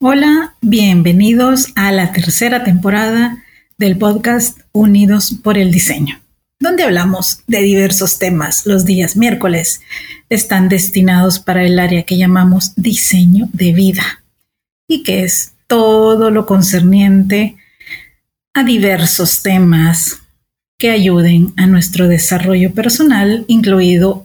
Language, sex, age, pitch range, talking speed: Spanish, female, 40-59, 185-220 Hz, 115 wpm